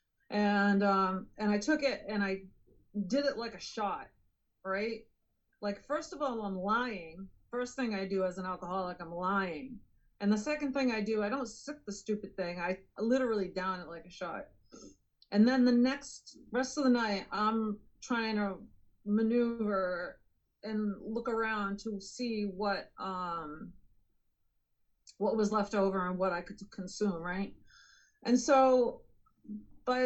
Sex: female